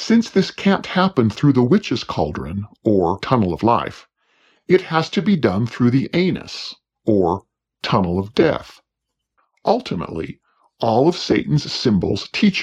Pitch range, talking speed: 115-160 Hz, 145 wpm